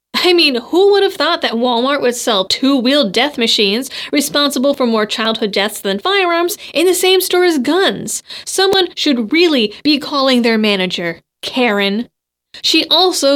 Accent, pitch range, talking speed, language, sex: American, 225-325 Hz, 160 wpm, English, female